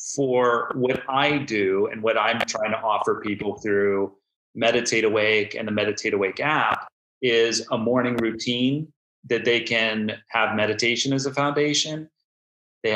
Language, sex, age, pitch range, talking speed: English, male, 30-49, 110-130 Hz, 150 wpm